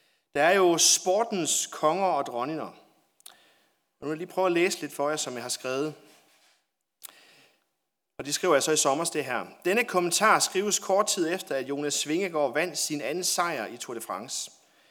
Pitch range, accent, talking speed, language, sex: 140-185 Hz, native, 185 wpm, Danish, male